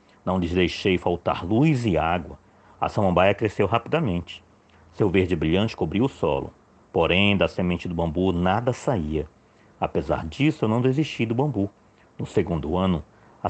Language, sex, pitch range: Portuguese, male, 90-115 Hz